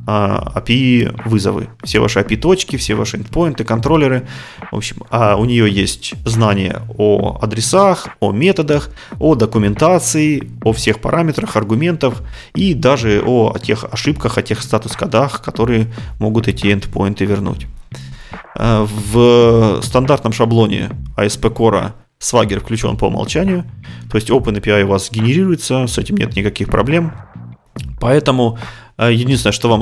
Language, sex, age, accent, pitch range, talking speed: Russian, male, 30-49, native, 105-130 Hz, 125 wpm